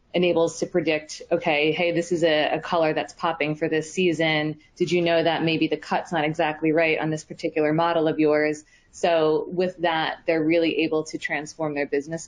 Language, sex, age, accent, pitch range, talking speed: English, female, 20-39, American, 150-165 Hz, 200 wpm